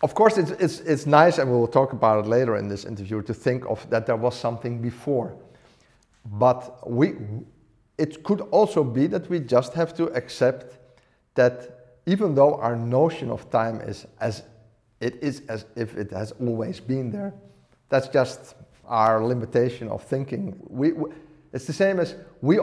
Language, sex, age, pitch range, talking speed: Danish, male, 50-69, 115-150 Hz, 180 wpm